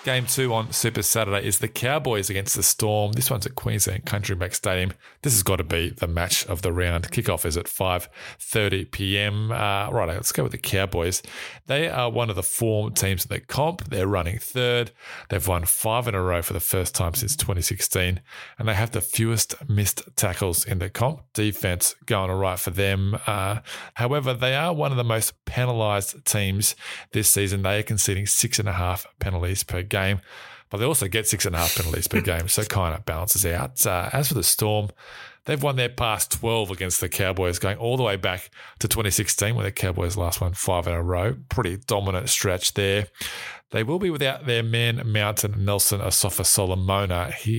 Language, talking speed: English, 205 wpm